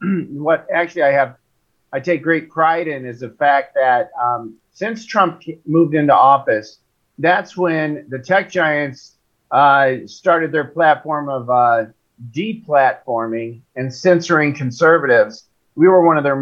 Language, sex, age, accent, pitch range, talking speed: English, male, 50-69, American, 135-175 Hz, 145 wpm